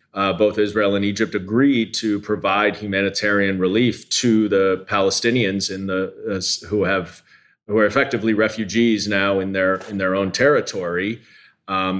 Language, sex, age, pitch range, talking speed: English, male, 30-49, 100-115 Hz, 150 wpm